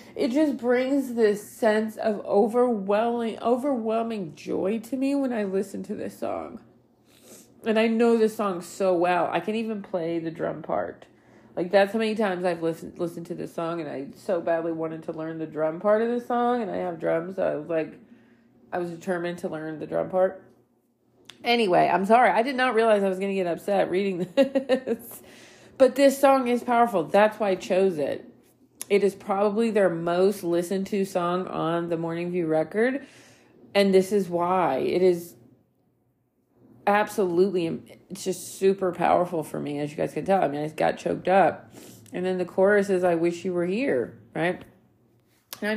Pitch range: 165-215 Hz